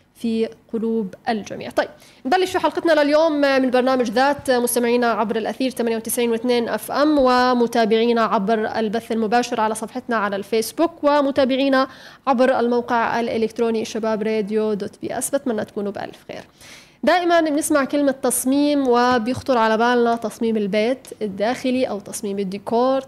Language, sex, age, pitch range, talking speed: Arabic, female, 20-39, 225-270 Hz, 135 wpm